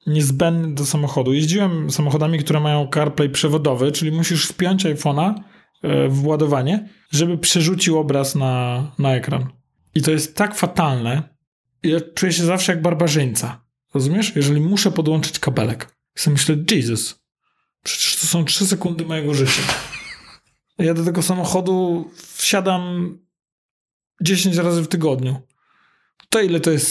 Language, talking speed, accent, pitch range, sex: Polish, 135 wpm, native, 140-175 Hz, male